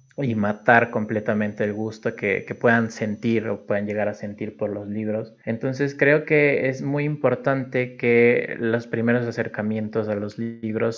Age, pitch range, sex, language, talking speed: 20-39, 110-125 Hz, male, Spanish, 165 wpm